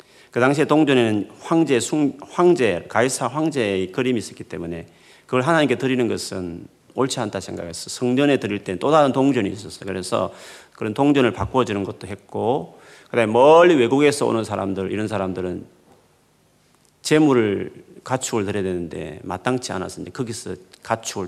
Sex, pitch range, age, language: male, 95-130 Hz, 40-59, Korean